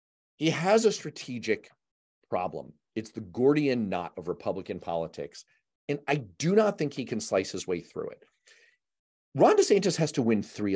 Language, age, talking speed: English, 40-59, 165 wpm